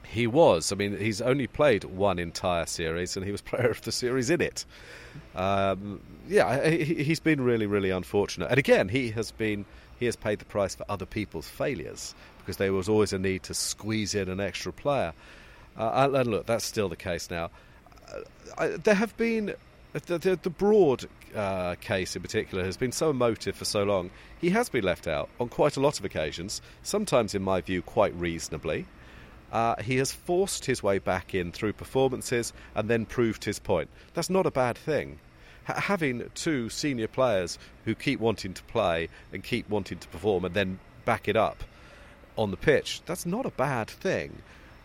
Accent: British